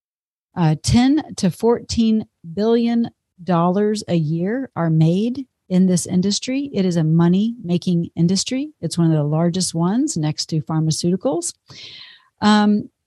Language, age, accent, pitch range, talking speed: English, 50-69, American, 160-195 Hz, 135 wpm